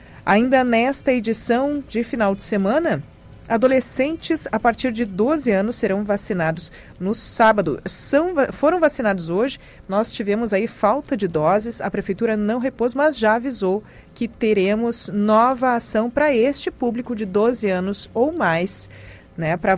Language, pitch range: Portuguese, 195-250 Hz